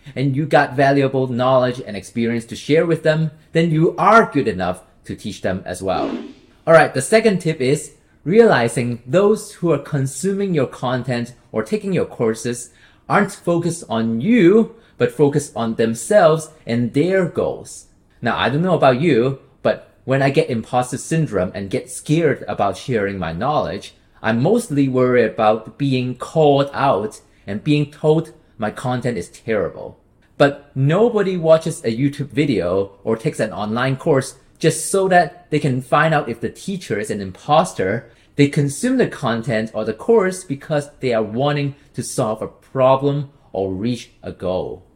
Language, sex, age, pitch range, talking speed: English, male, 30-49, 115-160 Hz, 165 wpm